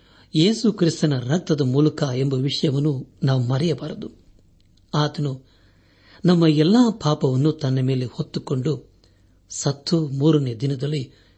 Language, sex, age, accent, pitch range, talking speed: Kannada, male, 60-79, native, 100-155 Hz, 95 wpm